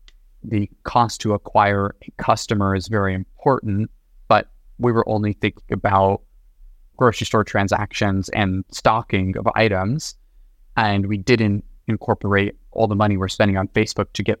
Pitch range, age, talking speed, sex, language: 100-115 Hz, 20-39, 145 wpm, male, English